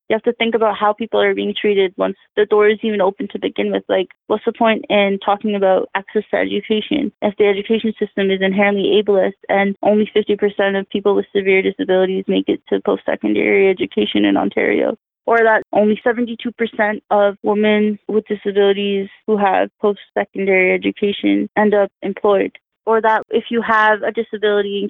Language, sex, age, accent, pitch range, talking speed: English, female, 20-39, American, 195-225 Hz, 180 wpm